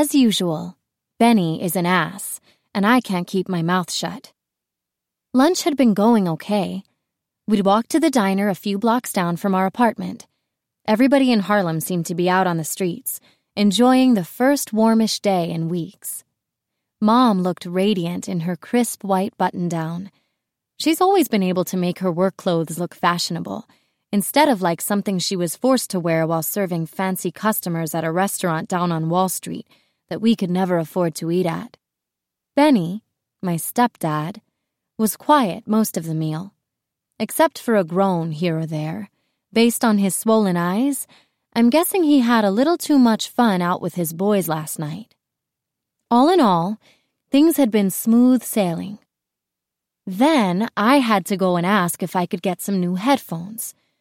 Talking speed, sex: 170 wpm, female